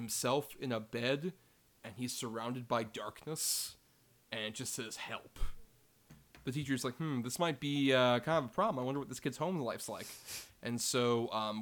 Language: English